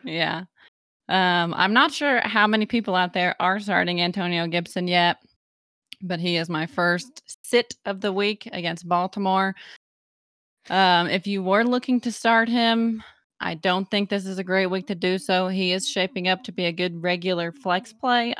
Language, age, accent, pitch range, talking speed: English, 20-39, American, 175-200 Hz, 185 wpm